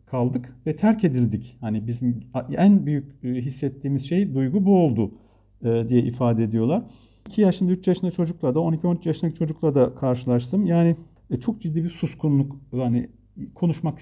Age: 50-69